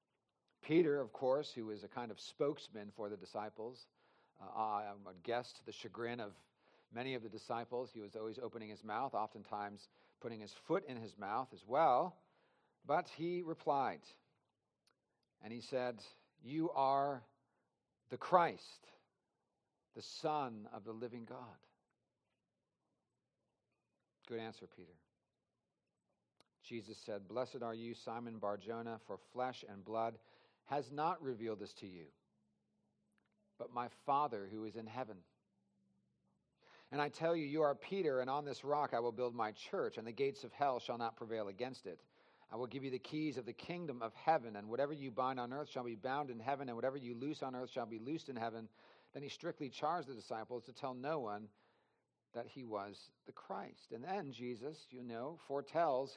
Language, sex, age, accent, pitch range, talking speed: English, male, 50-69, American, 110-135 Hz, 175 wpm